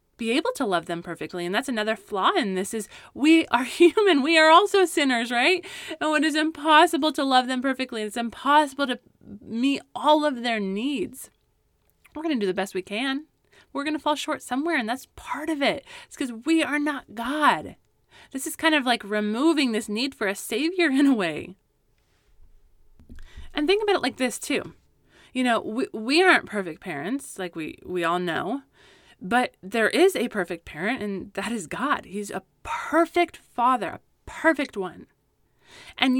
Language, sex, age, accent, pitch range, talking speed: English, female, 20-39, American, 215-320 Hz, 185 wpm